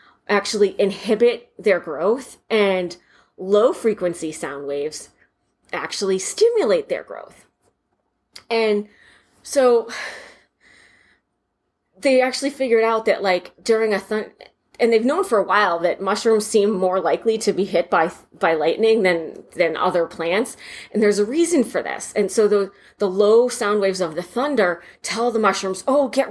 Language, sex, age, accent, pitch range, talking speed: English, female, 30-49, American, 195-245 Hz, 150 wpm